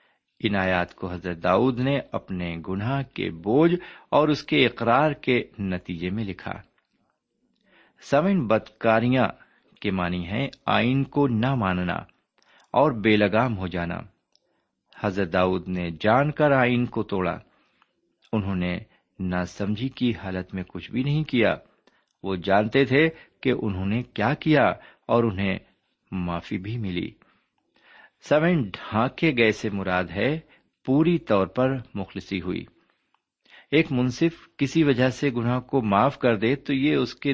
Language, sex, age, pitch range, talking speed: Urdu, male, 50-69, 95-135 Hz, 145 wpm